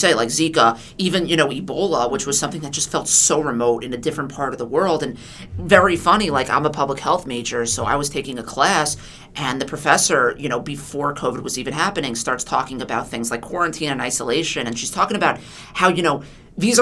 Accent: American